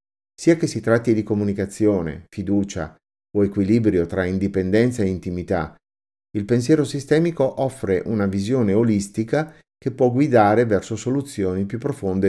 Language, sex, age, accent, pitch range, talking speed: Italian, male, 50-69, native, 95-120 Hz, 130 wpm